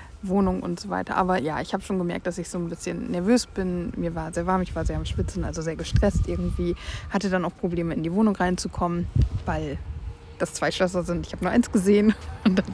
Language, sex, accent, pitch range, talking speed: German, female, German, 165-200 Hz, 235 wpm